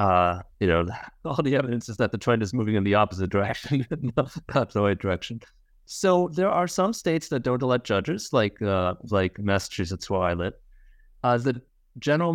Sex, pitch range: male, 95-120 Hz